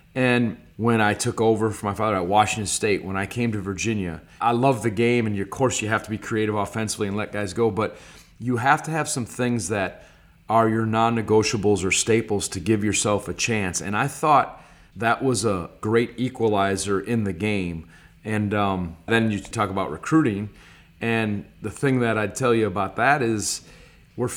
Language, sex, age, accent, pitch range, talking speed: English, male, 40-59, American, 105-125 Hz, 195 wpm